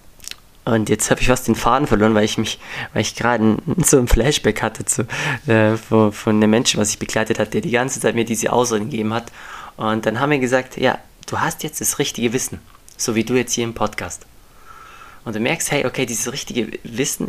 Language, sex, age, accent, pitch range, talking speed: German, male, 20-39, German, 110-130 Hz, 220 wpm